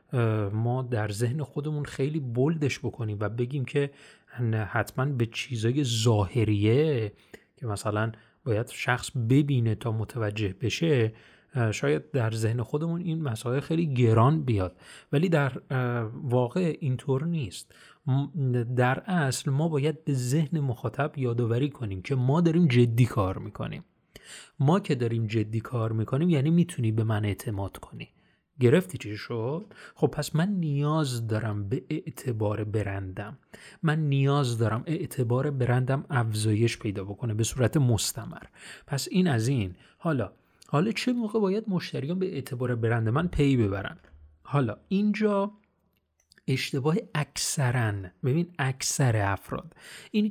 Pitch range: 110-150 Hz